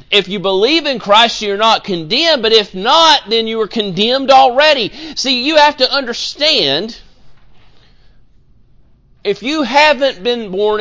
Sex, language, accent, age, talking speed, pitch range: male, English, American, 40-59, 145 wpm, 200-275 Hz